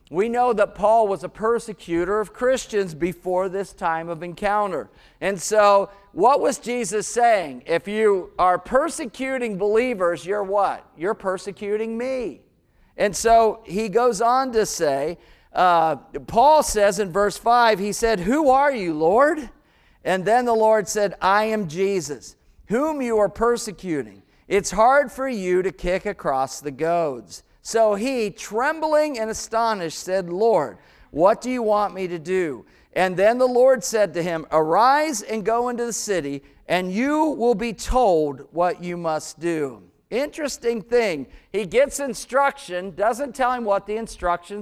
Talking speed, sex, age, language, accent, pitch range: 155 wpm, male, 50-69, English, American, 185-245 Hz